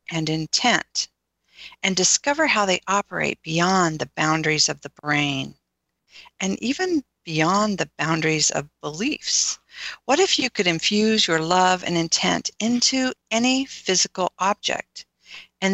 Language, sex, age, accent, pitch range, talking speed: English, female, 50-69, American, 160-215 Hz, 130 wpm